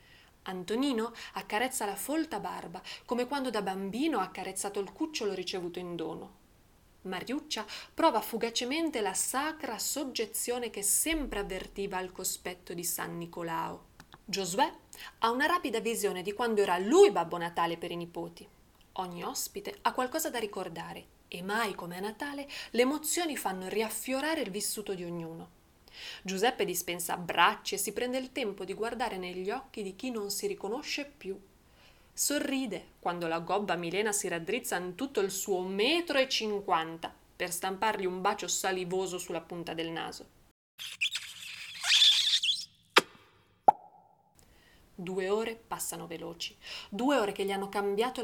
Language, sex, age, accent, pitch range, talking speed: Italian, female, 20-39, native, 180-245 Hz, 140 wpm